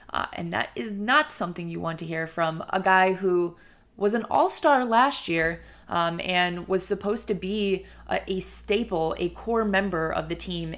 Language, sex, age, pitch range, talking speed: English, female, 20-39, 170-195 Hz, 190 wpm